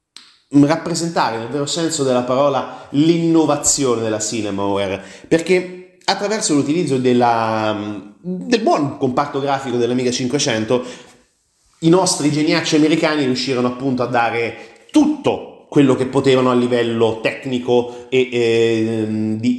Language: Italian